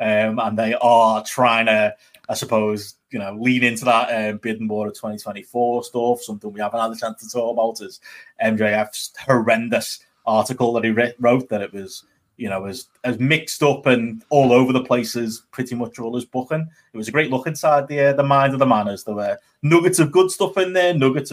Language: English